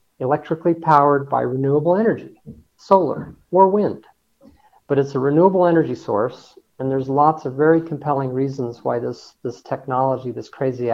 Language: English